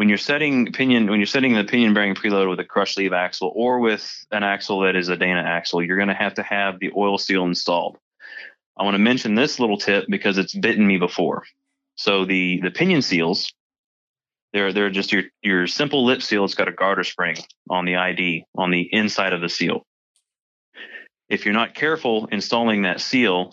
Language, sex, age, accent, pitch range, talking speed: English, male, 20-39, American, 95-110 Hz, 205 wpm